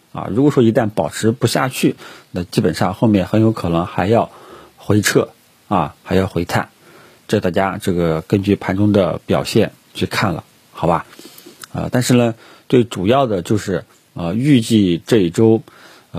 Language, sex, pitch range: Chinese, male, 95-120 Hz